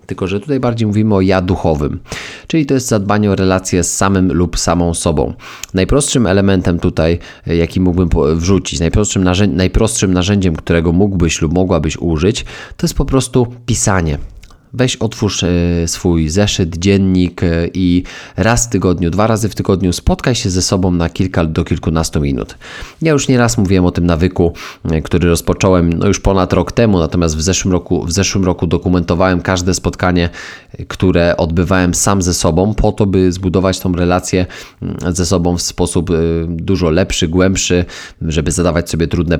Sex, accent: male, native